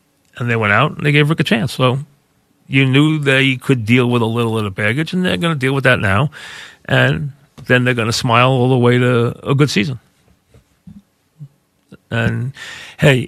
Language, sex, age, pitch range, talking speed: English, male, 40-59, 105-130 Hz, 205 wpm